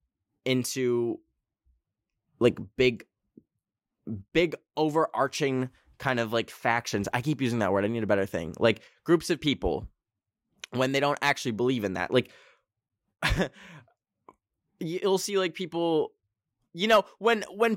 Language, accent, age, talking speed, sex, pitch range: English, American, 10-29, 130 wpm, male, 110-155 Hz